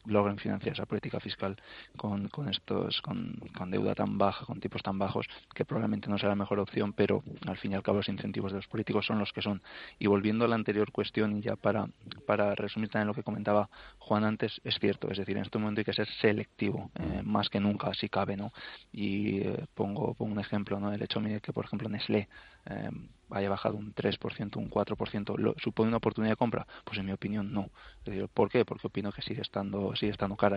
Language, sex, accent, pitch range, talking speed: Spanish, male, Spanish, 100-110 Hz, 230 wpm